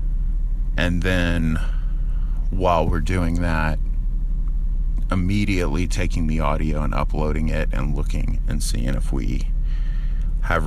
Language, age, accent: English, 30-49, American